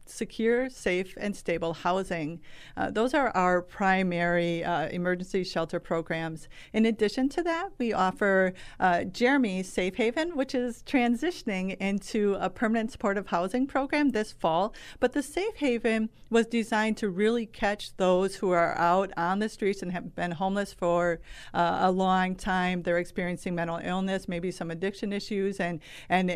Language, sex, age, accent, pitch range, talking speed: English, female, 50-69, American, 170-200 Hz, 160 wpm